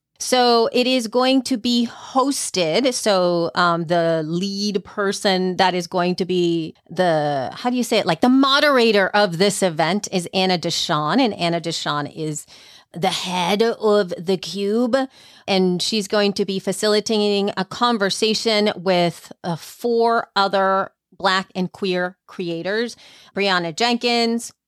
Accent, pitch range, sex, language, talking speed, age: American, 180-215 Hz, female, English, 145 wpm, 30-49